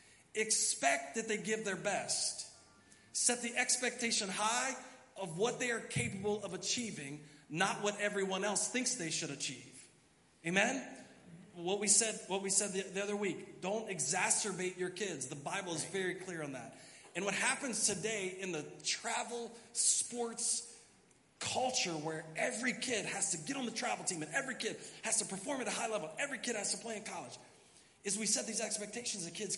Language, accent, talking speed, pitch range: English, American, 180 wpm, 165-225 Hz